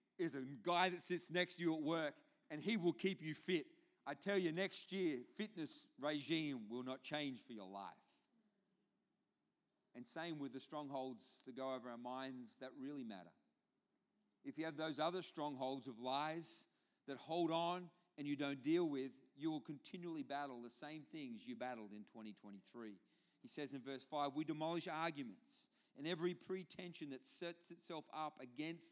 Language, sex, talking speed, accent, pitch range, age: English, male, 175 wpm, Australian, 145-205 Hz, 40-59